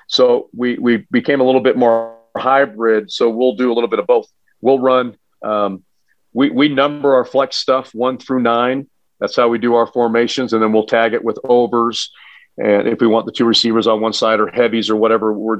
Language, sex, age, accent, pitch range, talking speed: English, male, 40-59, American, 110-125 Hz, 225 wpm